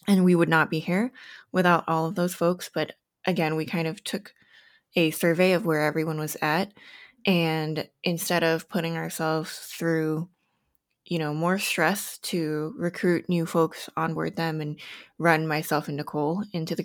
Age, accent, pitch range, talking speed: 20-39, American, 160-195 Hz, 165 wpm